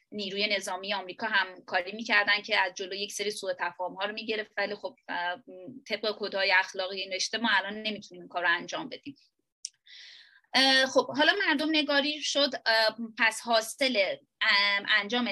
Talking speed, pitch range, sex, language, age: 145 wpm, 200-265 Hz, female, Persian, 20-39